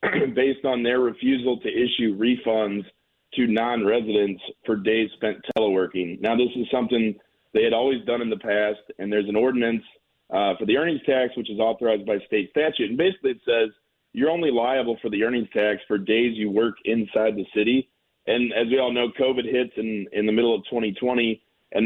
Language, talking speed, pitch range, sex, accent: English, 195 wpm, 105-125 Hz, male, American